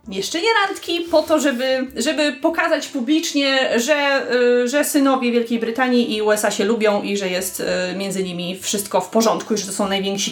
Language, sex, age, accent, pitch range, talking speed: Polish, female, 30-49, native, 235-300 Hz, 190 wpm